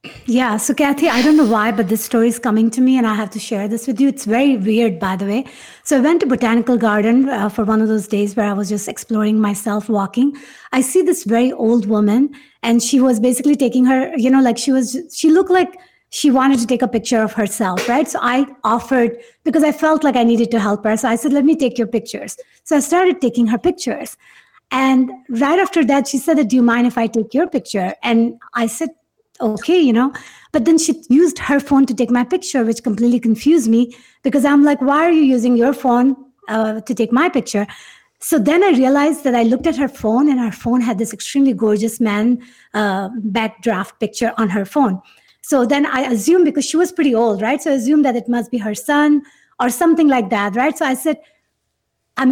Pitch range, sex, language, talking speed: 230-285 Hz, female, English, 235 wpm